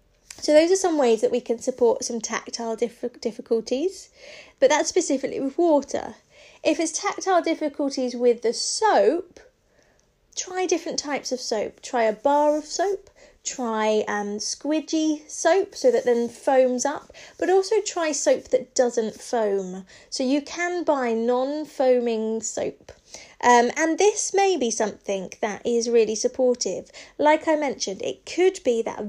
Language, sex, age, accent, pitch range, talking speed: English, female, 30-49, British, 235-320 Hz, 155 wpm